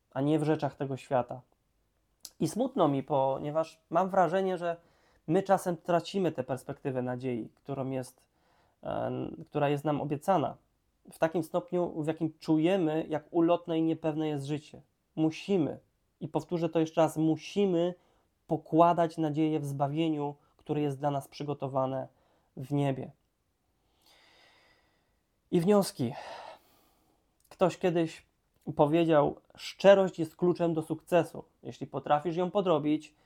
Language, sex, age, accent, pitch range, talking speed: Polish, male, 20-39, native, 140-165 Hz, 125 wpm